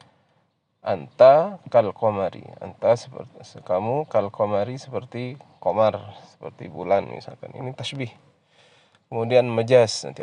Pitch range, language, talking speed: 110-135 Hz, Indonesian, 95 wpm